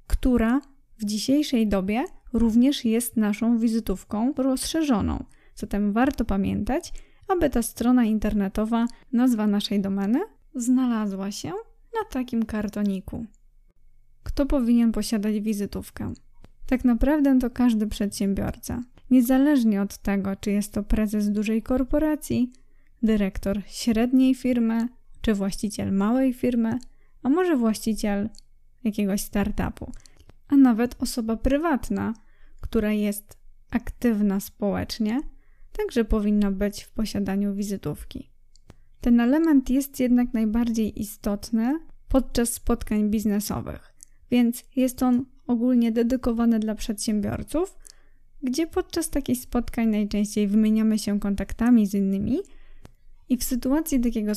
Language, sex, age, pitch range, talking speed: Polish, female, 20-39, 210-255 Hz, 110 wpm